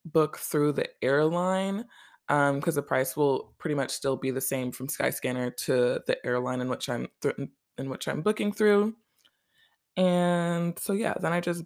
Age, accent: 20-39, American